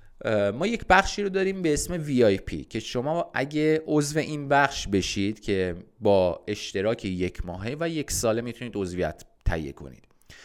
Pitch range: 100-140 Hz